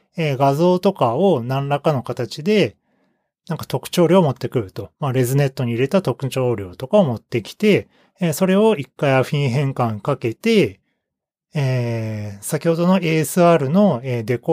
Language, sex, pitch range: Japanese, male, 120-190 Hz